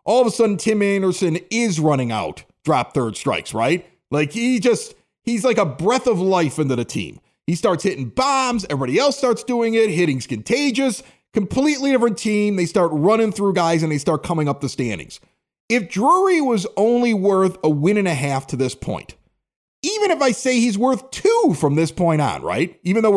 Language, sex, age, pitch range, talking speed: English, male, 40-59, 175-255 Hz, 200 wpm